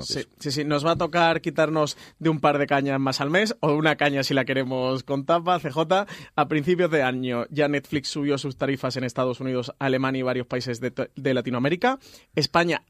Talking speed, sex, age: 210 wpm, male, 30-49